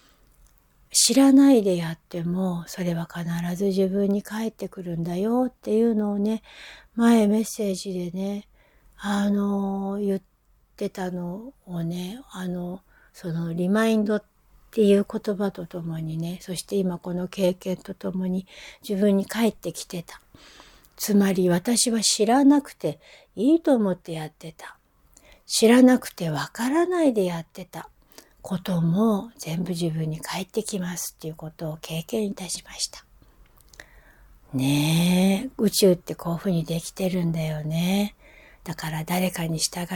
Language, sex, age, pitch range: Japanese, female, 60-79, 175-225 Hz